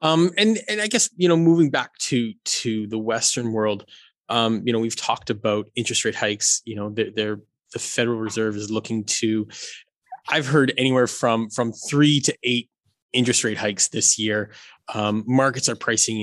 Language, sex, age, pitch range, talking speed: English, male, 20-39, 110-125 Hz, 185 wpm